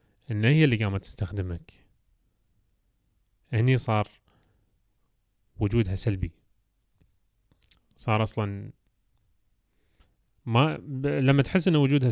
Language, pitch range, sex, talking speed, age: Arabic, 105-135 Hz, male, 80 wpm, 30-49